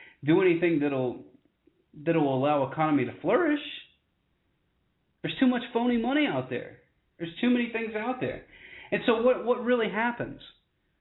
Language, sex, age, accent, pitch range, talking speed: English, male, 30-49, American, 140-205 Hz, 145 wpm